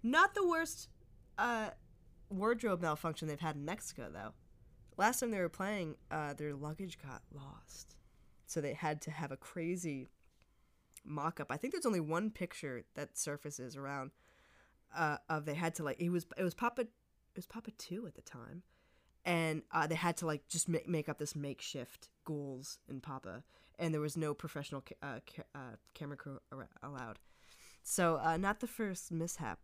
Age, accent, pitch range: 10-29, American, 145-195 Hz